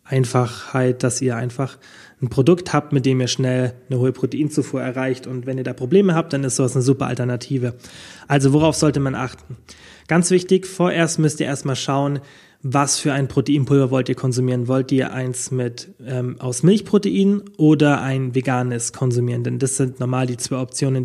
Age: 20-39